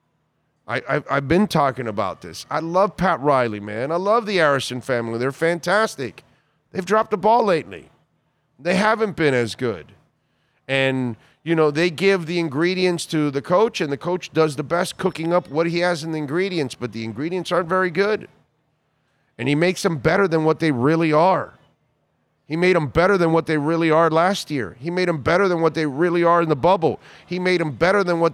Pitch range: 145-185 Hz